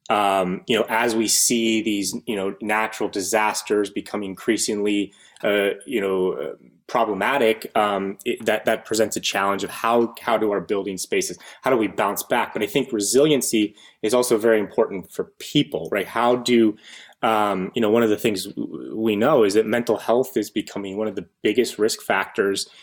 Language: English